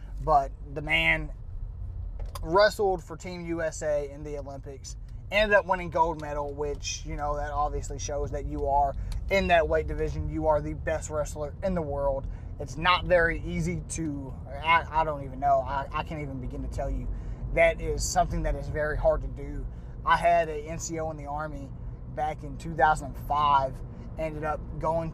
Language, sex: English, male